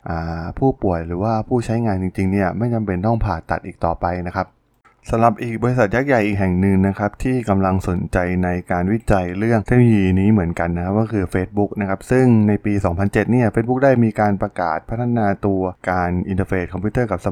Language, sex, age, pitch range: Thai, male, 20-39, 95-120 Hz